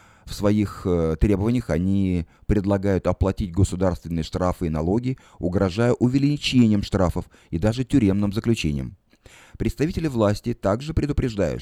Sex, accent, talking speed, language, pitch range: male, native, 110 wpm, Russian, 90-120 Hz